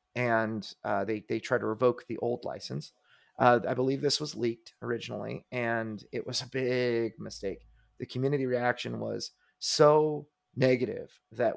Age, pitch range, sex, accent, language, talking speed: 30-49, 115-135 Hz, male, American, English, 155 wpm